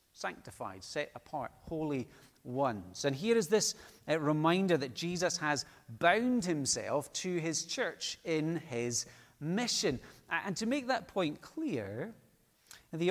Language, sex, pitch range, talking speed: English, male, 125-170 Hz, 135 wpm